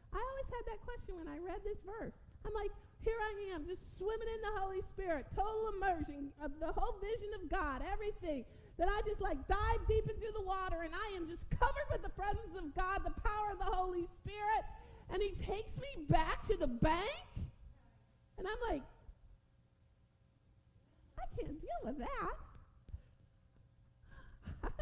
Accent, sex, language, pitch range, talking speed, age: American, female, English, 265-395 Hz, 175 wpm, 40-59